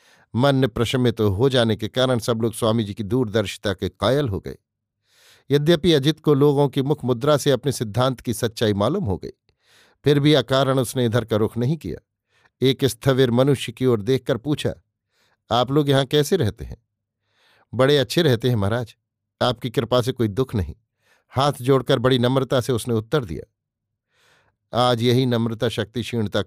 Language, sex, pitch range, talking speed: Hindi, male, 110-135 Hz, 170 wpm